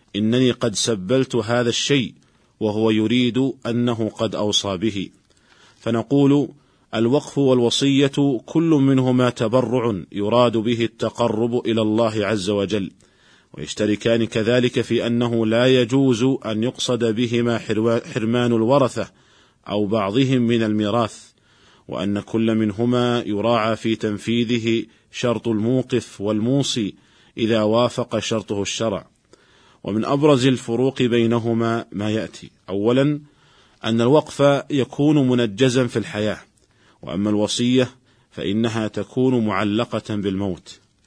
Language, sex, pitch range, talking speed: Arabic, male, 110-125 Hz, 105 wpm